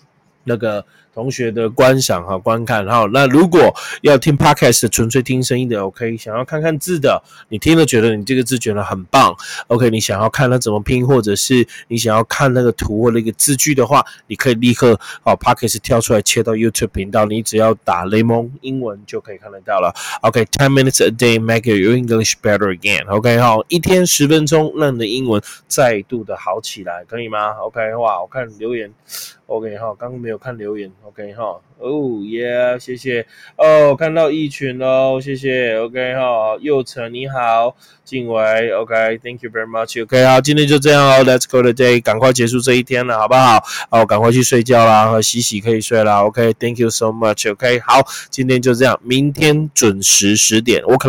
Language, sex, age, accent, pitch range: Chinese, male, 20-39, native, 110-130 Hz